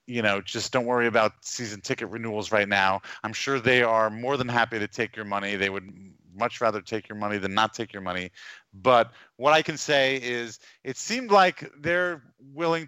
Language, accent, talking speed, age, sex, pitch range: English, American, 210 wpm, 30-49, male, 110-135 Hz